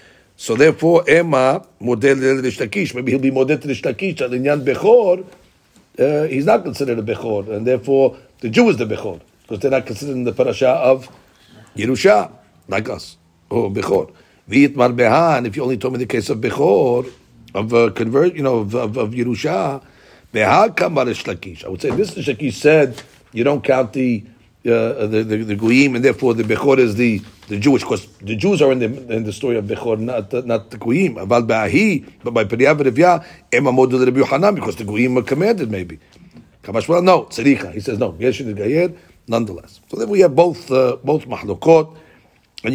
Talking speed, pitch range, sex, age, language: 185 wpm, 110-140 Hz, male, 60-79, English